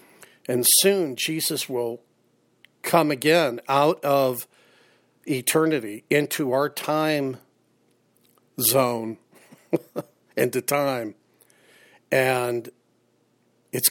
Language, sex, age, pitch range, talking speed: English, male, 50-69, 125-170 Hz, 75 wpm